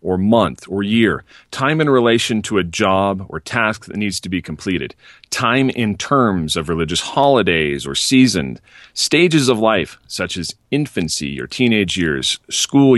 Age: 40-59